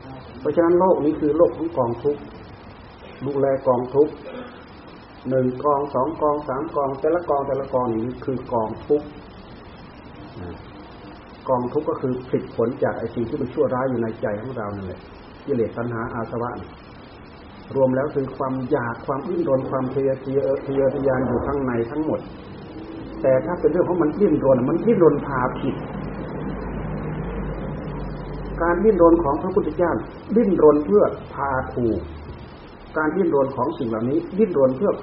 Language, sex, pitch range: Thai, male, 115-150 Hz